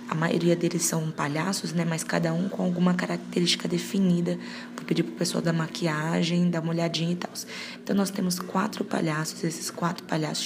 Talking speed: 190 wpm